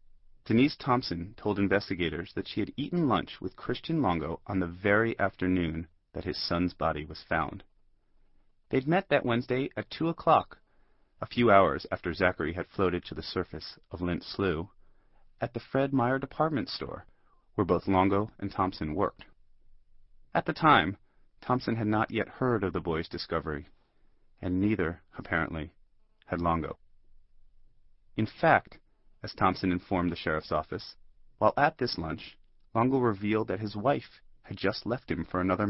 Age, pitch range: 30-49, 85-115 Hz